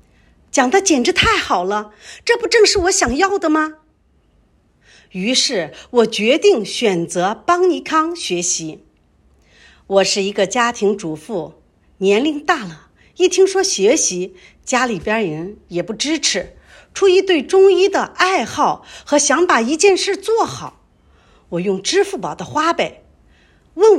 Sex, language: female, Chinese